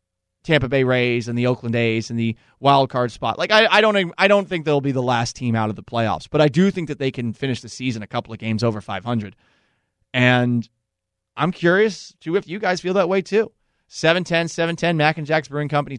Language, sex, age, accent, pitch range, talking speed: English, male, 30-49, American, 110-170 Hz, 235 wpm